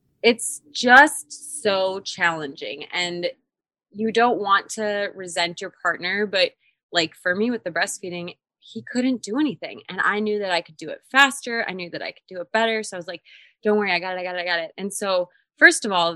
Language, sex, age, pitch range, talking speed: English, female, 20-39, 180-275 Hz, 225 wpm